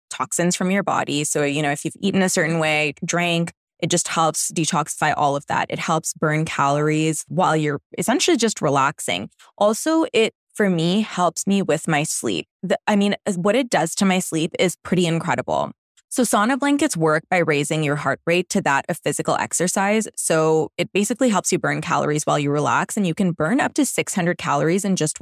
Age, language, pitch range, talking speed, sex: 20-39, English, 155-190 Hz, 200 wpm, female